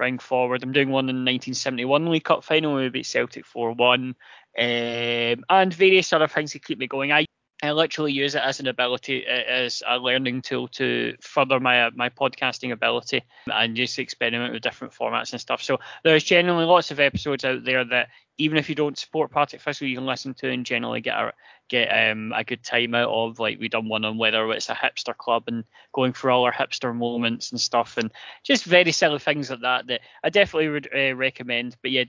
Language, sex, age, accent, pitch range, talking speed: English, male, 20-39, British, 125-150 Hz, 215 wpm